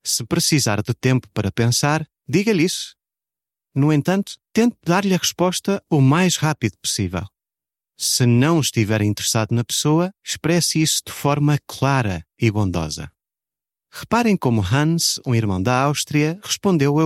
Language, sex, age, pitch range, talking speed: Portuguese, male, 30-49, 115-165 Hz, 140 wpm